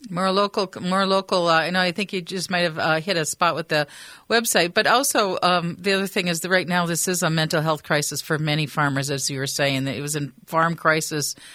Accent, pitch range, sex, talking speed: American, 165-215 Hz, female, 250 wpm